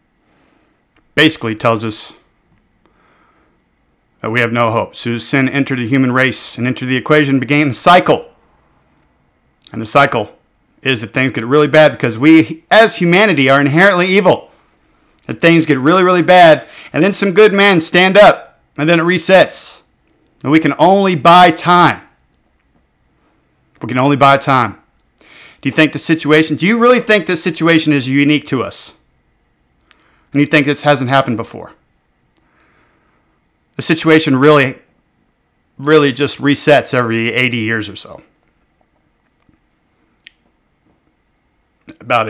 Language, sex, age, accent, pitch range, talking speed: English, male, 50-69, American, 125-170 Hz, 140 wpm